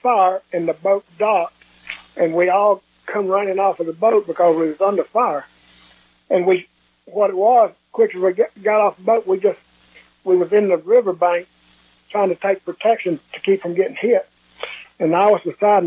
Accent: American